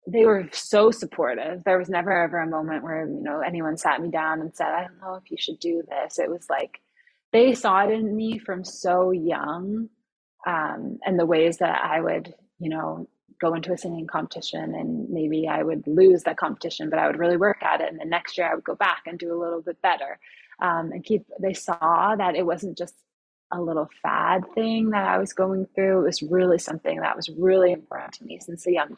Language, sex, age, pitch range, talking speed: English, female, 20-39, 165-195 Hz, 230 wpm